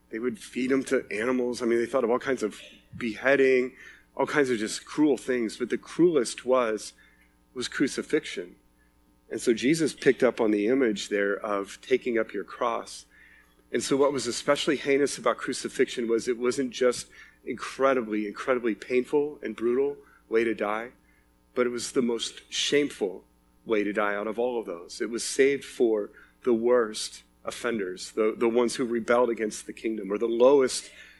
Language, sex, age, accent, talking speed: English, male, 40-59, American, 180 wpm